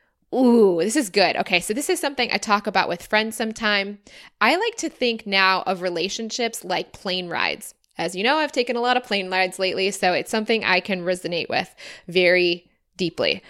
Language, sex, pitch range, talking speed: English, female, 185-235 Hz, 200 wpm